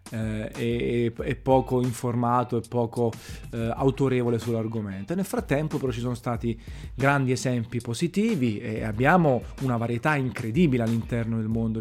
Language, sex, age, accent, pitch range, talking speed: Italian, male, 30-49, native, 120-155 Hz, 135 wpm